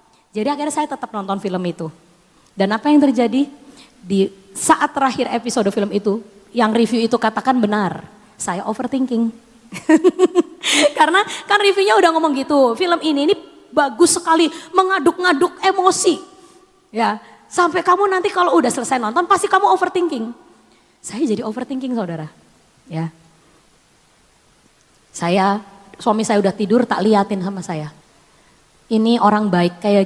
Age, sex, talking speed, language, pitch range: 20-39, female, 135 wpm, Indonesian, 200-330 Hz